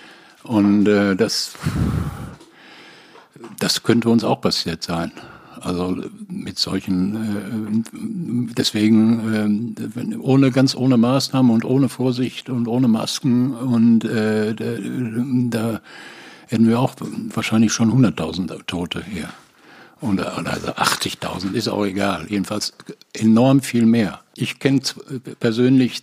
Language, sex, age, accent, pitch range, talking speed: German, male, 60-79, German, 110-125 Hz, 120 wpm